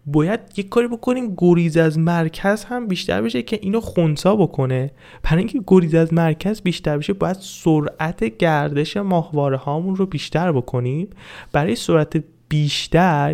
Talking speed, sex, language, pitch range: 145 wpm, male, Persian, 140-185 Hz